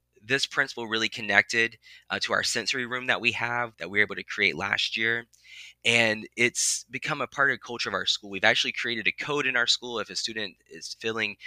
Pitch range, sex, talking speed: 105-125 Hz, male, 230 wpm